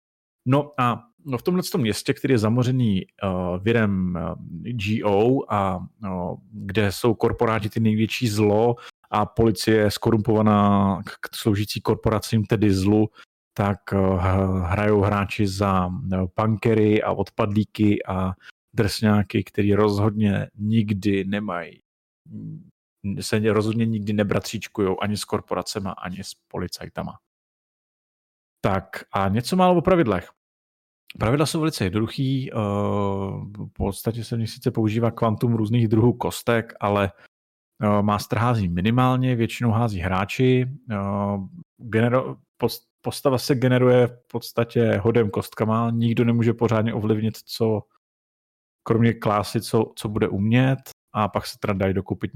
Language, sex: Czech, male